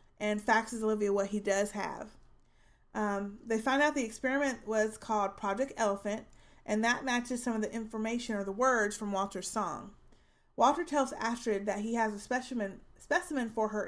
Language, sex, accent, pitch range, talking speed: English, female, American, 205-245 Hz, 175 wpm